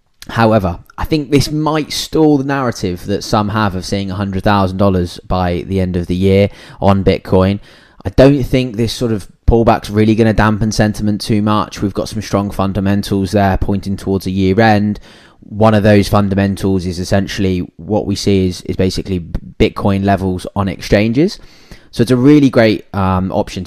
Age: 20-39